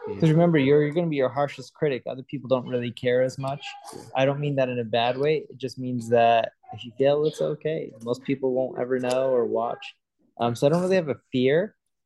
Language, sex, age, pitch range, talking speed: English, male, 20-39, 125-155 Hz, 245 wpm